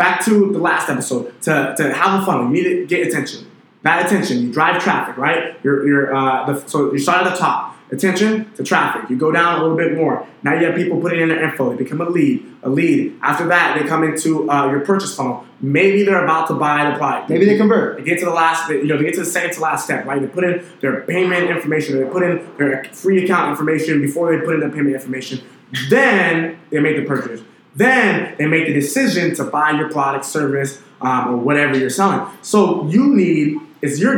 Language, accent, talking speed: English, American, 235 wpm